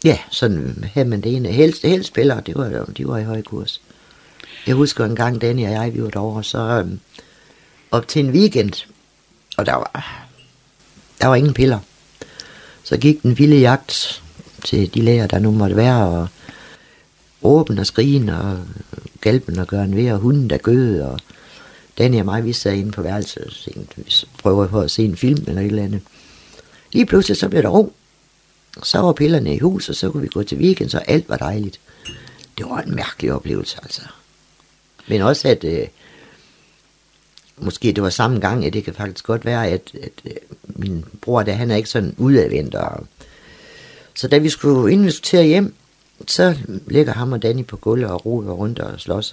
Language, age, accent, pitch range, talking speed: Danish, 60-79, native, 105-135 Hz, 190 wpm